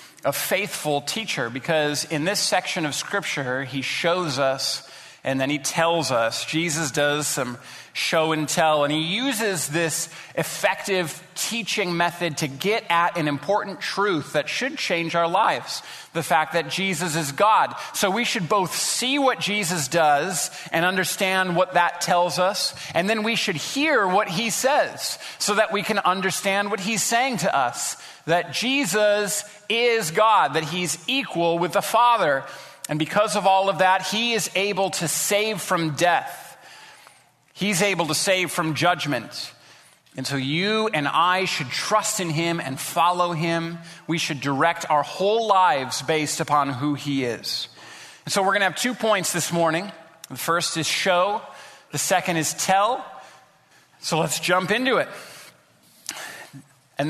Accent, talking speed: American, 165 wpm